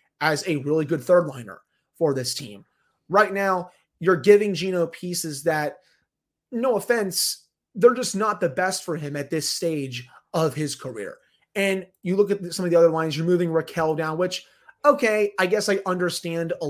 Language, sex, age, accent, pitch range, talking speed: English, male, 30-49, American, 150-185 Hz, 180 wpm